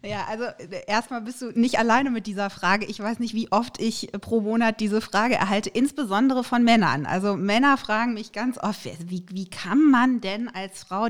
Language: German